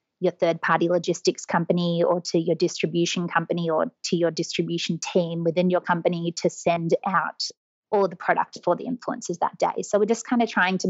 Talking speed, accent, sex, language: 195 wpm, Australian, female, English